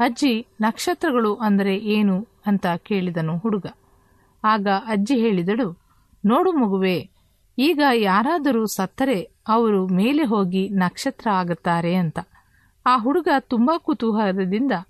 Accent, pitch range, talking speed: native, 185-240 Hz, 100 wpm